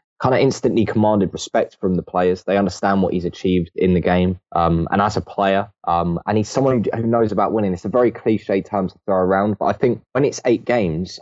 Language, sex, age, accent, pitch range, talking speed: English, male, 10-29, British, 90-105 Hz, 235 wpm